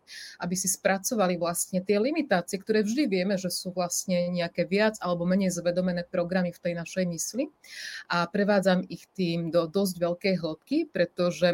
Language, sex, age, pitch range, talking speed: Czech, female, 30-49, 175-200 Hz, 160 wpm